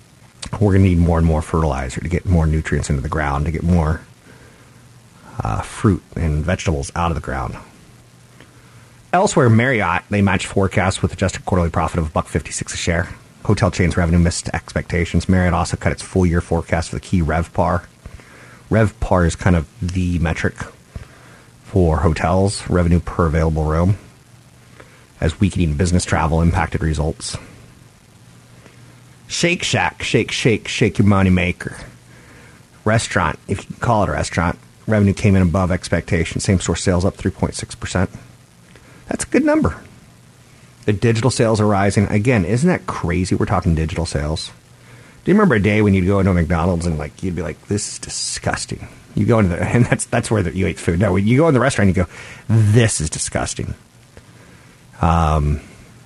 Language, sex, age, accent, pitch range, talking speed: English, male, 40-59, American, 80-105 Hz, 170 wpm